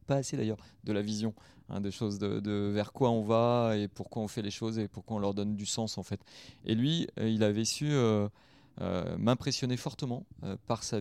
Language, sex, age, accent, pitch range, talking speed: French, male, 30-49, French, 105-120 Hz, 225 wpm